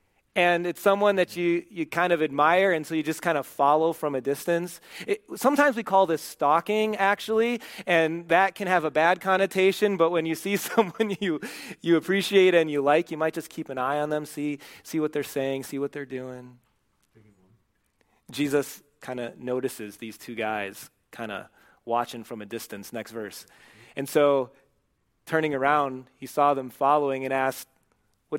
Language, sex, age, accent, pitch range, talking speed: English, male, 30-49, American, 130-170 Hz, 185 wpm